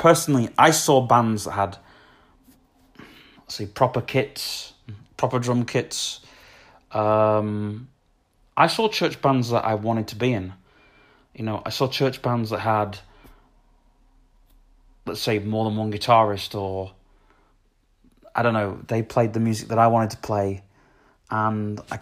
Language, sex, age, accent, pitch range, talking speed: English, male, 30-49, British, 105-125 Hz, 145 wpm